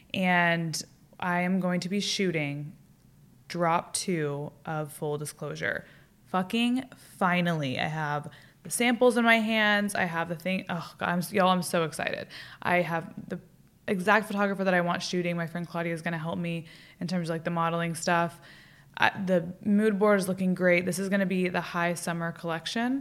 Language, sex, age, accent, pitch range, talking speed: English, female, 20-39, American, 165-190 Hz, 185 wpm